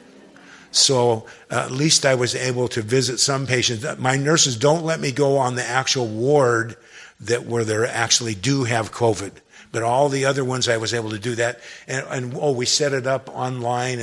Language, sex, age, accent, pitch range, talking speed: English, male, 50-69, American, 115-135 Hz, 200 wpm